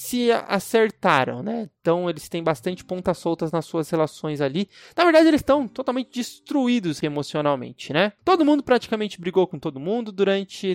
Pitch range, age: 170-245 Hz, 20-39